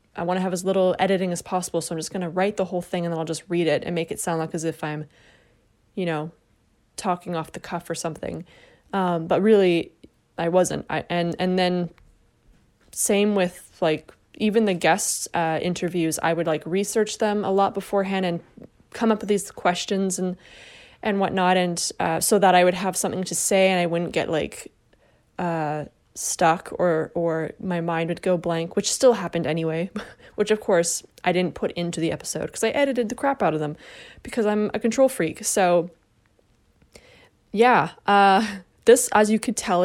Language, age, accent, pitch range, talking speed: Czech, 20-39, American, 170-205 Hz, 195 wpm